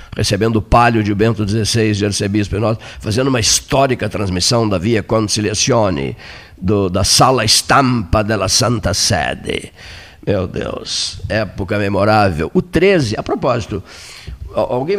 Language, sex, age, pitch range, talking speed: Portuguese, male, 60-79, 95-125 Hz, 130 wpm